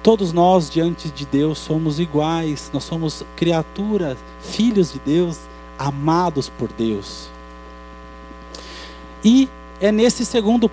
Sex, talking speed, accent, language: male, 110 wpm, Brazilian, Portuguese